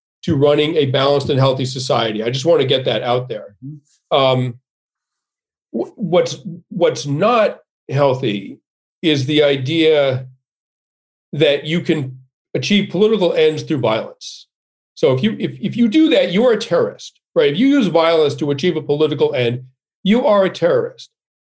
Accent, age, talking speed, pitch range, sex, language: American, 40-59, 155 wpm, 150-235 Hz, male, English